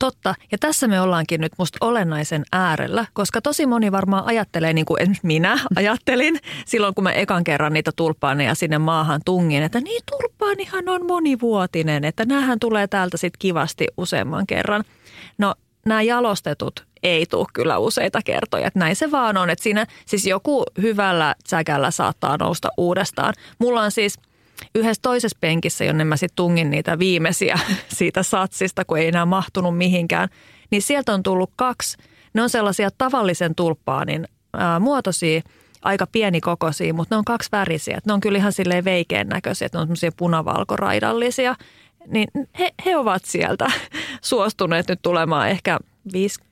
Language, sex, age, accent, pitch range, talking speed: Finnish, female, 30-49, native, 165-220 Hz, 160 wpm